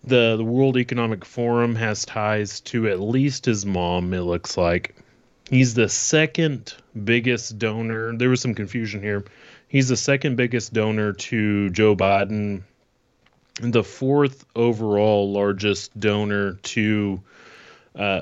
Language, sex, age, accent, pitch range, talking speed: English, male, 30-49, American, 100-125 Hz, 135 wpm